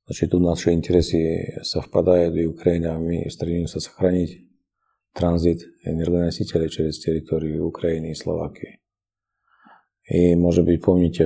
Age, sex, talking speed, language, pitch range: 40-59, male, 110 wpm, Ukrainian, 80-90 Hz